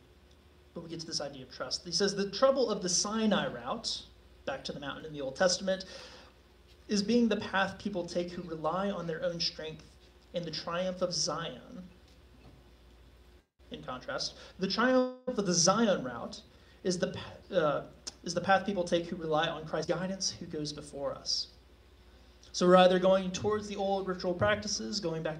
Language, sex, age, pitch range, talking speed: English, male, 30-49, 120-200 Hz, 175 wpm